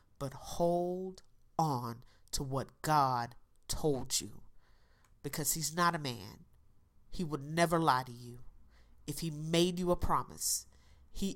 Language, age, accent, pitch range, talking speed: English, 40-59, American, 110-170 Hz, 135 wpm